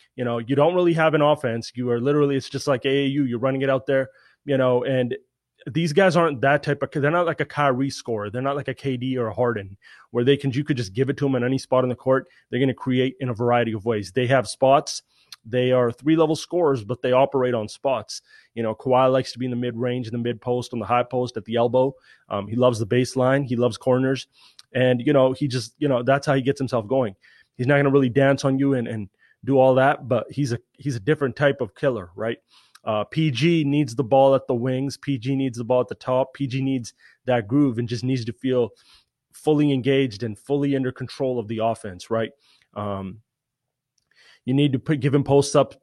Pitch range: 125-140 Hz